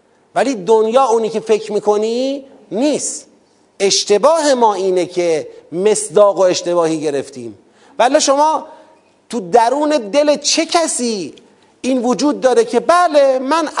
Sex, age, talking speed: male, 40-59, 120 wpm